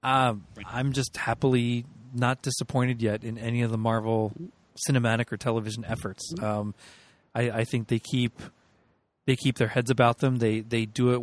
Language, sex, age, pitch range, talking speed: English, male, 30-49, 110-130 Hz, 170 wpm